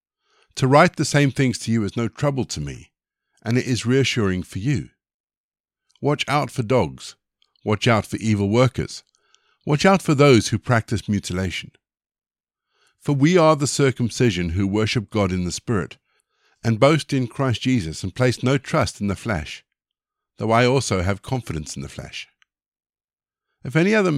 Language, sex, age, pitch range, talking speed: English, male, 50-69, 100-135 Hz, 170 wpm